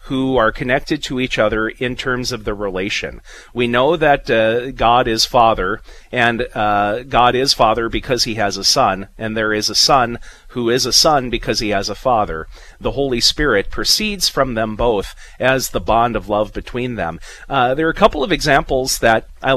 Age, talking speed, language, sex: 40-59, 200 wpm, English, male